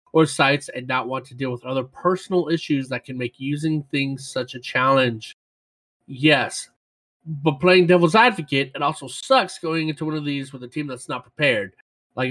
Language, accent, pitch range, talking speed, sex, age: English, American, 130-180 Hz, 190 wpm, male, 30-49